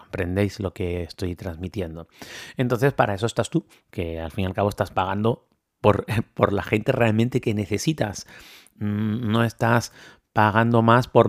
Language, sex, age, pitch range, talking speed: Spanish, male, 30-49, 100-125 Hz, 160 wpm